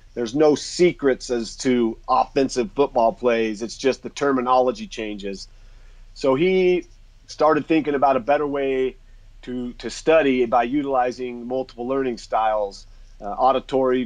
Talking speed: 130 wpm